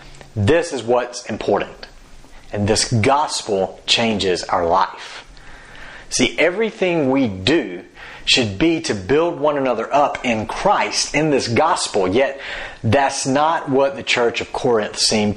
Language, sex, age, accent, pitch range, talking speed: English, male, 40-59, American, 115-145 Hz, 135 wpm